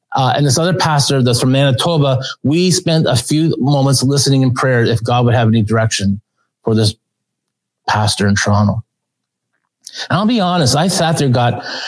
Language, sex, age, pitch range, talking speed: English, male, 30-49, 125-160 Hz, 175 wpm